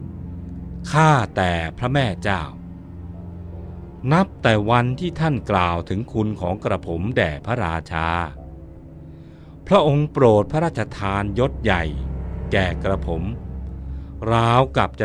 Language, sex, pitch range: Thai, male, 80-125 Hz